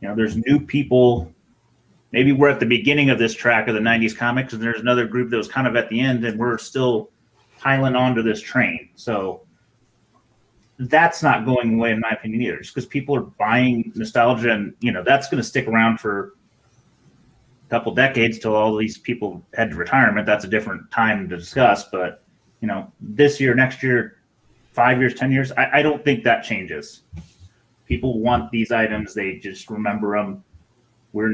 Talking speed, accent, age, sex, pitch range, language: 190 wpm, American, 30-49, male, 115-140 Hz, English